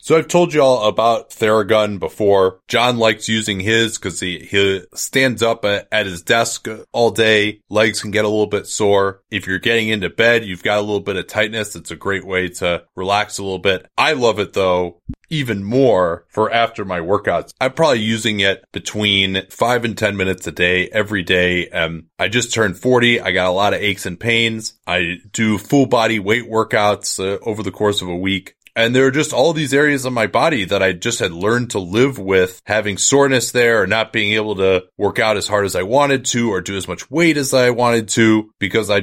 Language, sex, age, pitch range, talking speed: English, male, 30-49, 100-120 Hz, 220 wpm